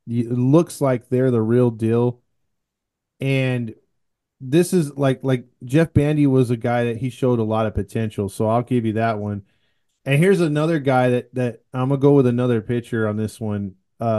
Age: 20-39